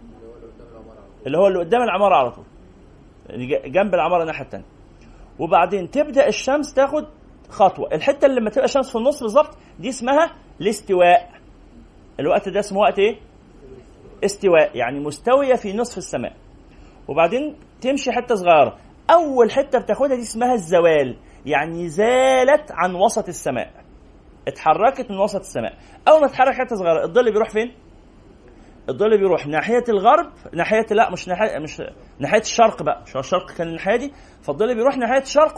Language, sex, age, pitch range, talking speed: Arabic, male, 30-49, 180-265 Hz, 145 wpm